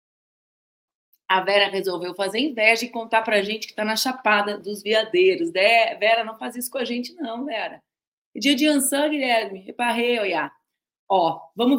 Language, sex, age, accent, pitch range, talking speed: Portuguese, female, 30-49, Brazilian, 210-265 Hz, 170 wpm